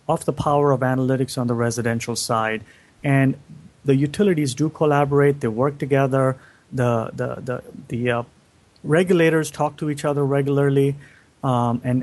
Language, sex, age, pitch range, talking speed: English, male, 30-49, 125-145 Hz, 150 wpm